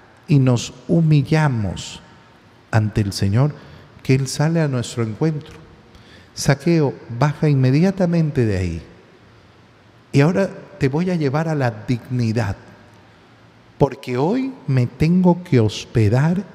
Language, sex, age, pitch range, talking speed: Spanish, male, 50-69, 110-155 Hz, 115 wpm